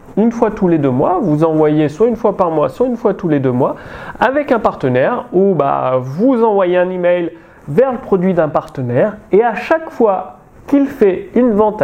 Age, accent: 30-49, French